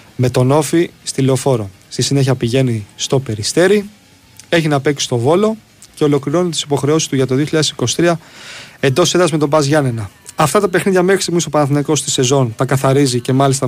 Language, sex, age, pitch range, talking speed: Greek, male, 30-49, 125-160 Hz, 185 wpm